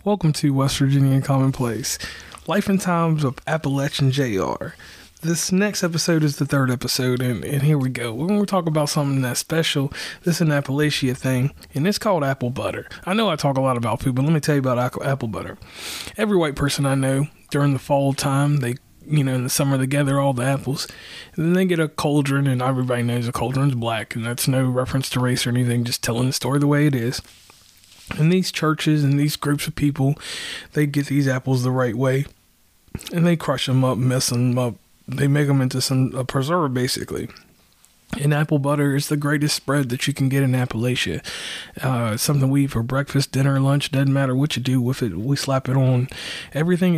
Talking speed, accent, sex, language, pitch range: 215 wpm, American, male, English, 125-150 Hz